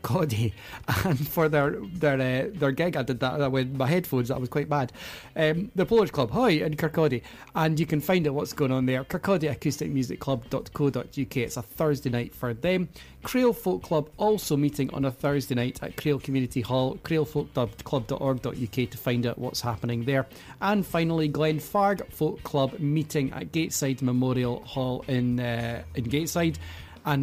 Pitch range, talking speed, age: 125-155 Hz, 170 wpm, 30-49